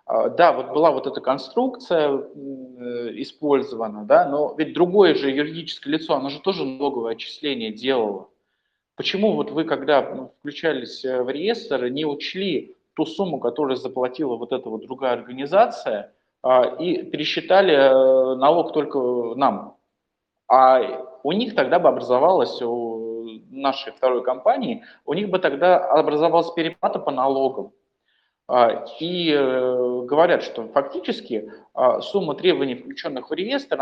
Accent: native